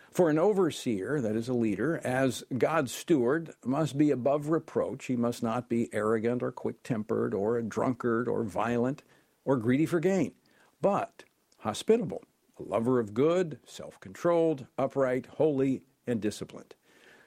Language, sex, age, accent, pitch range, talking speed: English, male, 50-69, American, 120-160 Hz, 145 wpm